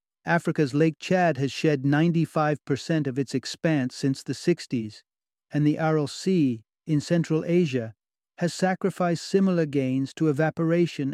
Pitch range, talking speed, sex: 135-165 Hz, 135 wpm, male